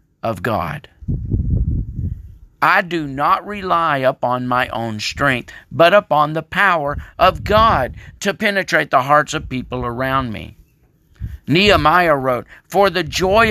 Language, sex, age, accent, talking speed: English, male, 50-69, American, 120 wpm